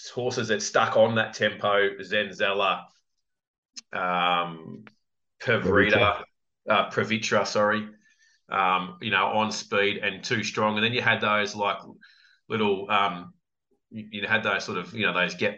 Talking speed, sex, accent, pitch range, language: 145 wpm, male, Australian, 95-115 Hz, English